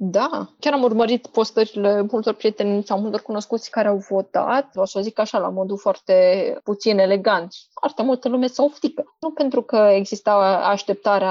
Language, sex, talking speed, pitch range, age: Romanian, female, 175 wpm, 200-265 Hz, 20-39